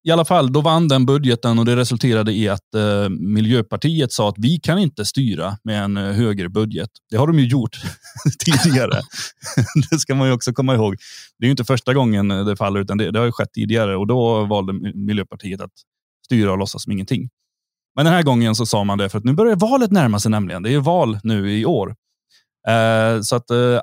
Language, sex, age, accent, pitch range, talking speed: Swedish, male, 30-49, native, 105-135 Hz, 225 wpm